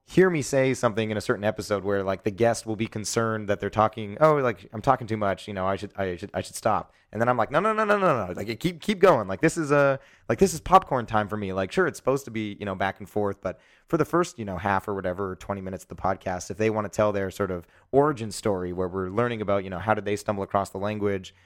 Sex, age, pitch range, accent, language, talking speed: male, 30-49, 95-115 Hz, American, English, 300 wpm